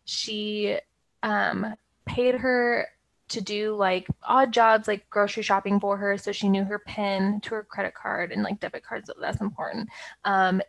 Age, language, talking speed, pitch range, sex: 20-39, English, 170 wpm, 205-245 Hz, female